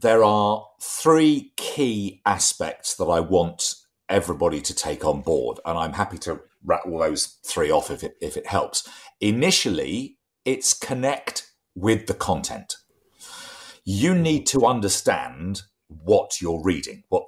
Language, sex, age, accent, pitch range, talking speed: English, male, 40-59, British, 100-165 Hz, 140 wpm